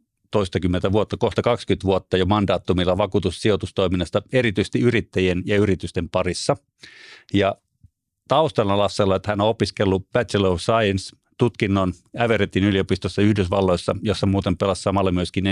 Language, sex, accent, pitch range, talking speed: Finnish, male, native, 95-115 Hz, 120 wpm